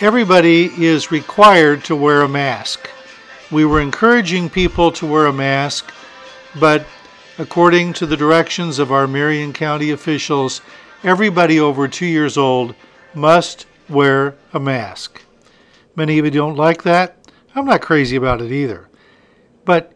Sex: male